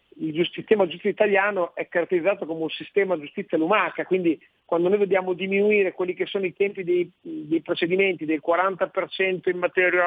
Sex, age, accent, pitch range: male, 40-59, native, 175-205 Hz